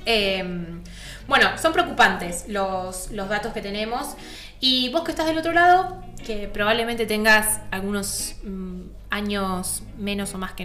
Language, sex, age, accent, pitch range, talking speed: Spanish, female, 20-39, Argentinian, 195-240 Hz, 145 wpm